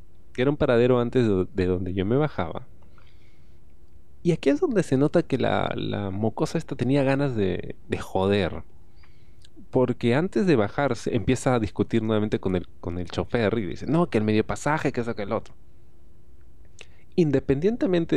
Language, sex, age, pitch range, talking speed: Spanish, male, 30-49, 100-155 Hz, 170 wpm